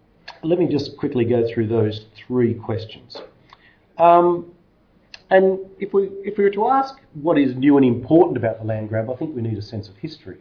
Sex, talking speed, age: male, 200 wpm, 40-59